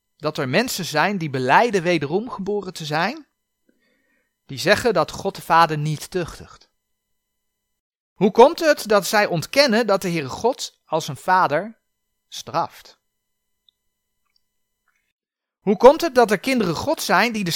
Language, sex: Dutch, male